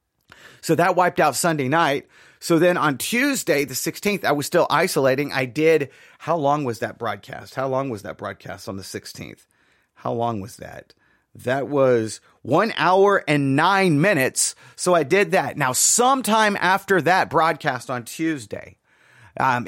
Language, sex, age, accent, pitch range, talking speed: English, male, 30-49, American, 125-170 Hz, 165 wpm